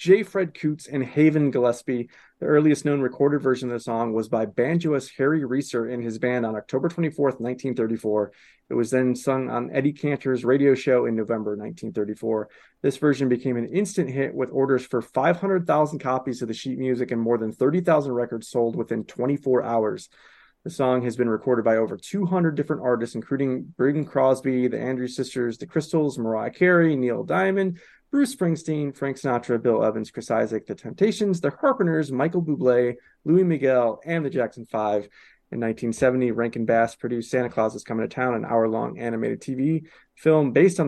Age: 20-39